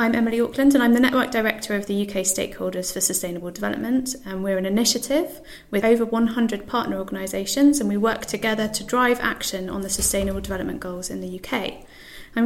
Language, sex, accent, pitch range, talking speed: English, female, British, 195-245 Hz, 195 wpm